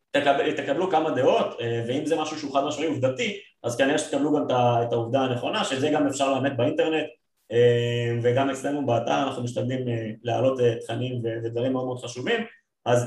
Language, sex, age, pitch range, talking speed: Hebrew, male, 20-39, 135-180 Hz, 160 wpm